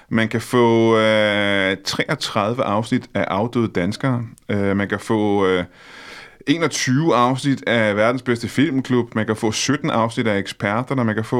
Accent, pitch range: native, 100-120 Hz